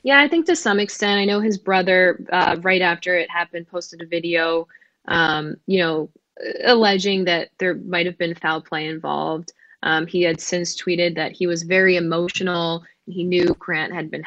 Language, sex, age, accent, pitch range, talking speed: English, female, 10-29, American, 165-180 Hz, 185 wpm